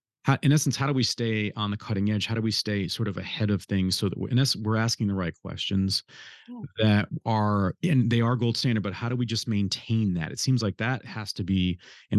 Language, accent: English, American